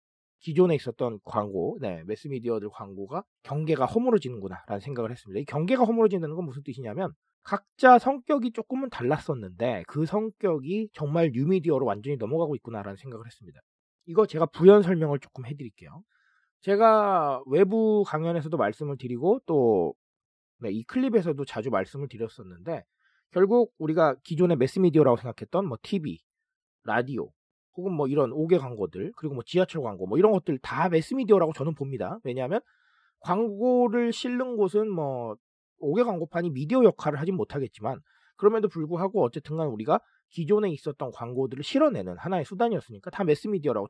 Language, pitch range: Korean, 135-205 Hz